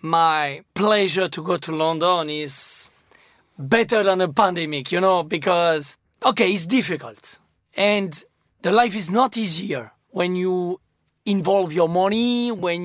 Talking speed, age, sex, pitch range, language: 135 wpm, 30-49, male, 175-225 Hz, English